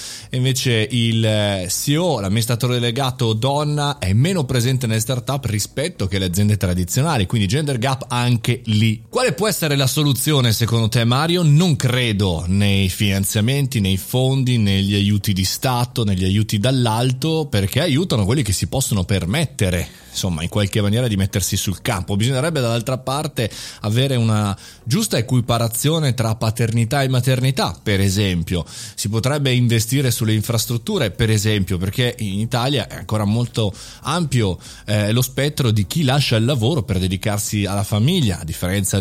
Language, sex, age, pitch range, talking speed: Italian, male, 30-49, 105-130 Hz, 150 wpm